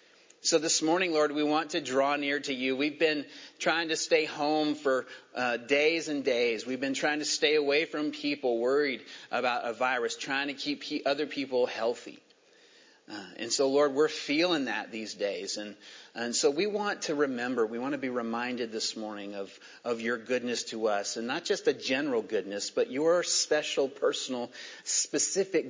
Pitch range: 120-165 Hz